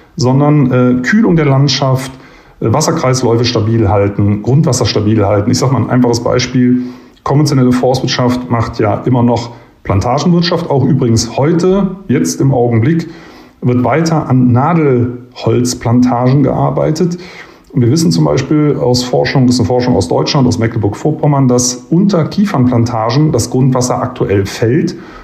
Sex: male